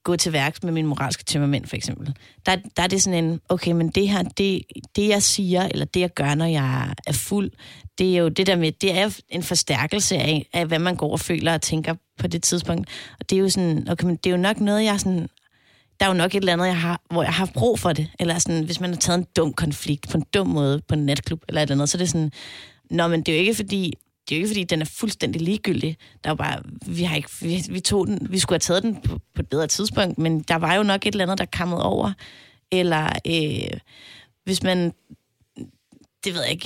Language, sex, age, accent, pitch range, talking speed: Danish, female, 30-49, native, 160-195 Hz, 265 wpm